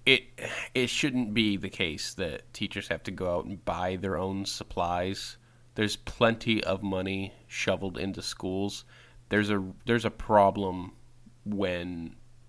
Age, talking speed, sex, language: 20-39, 145 wpm, male, English